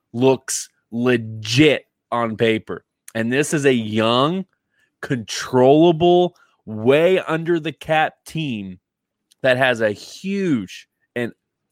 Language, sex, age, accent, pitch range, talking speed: English, male, 20-39, American, 115-145 Hz, 100 wpm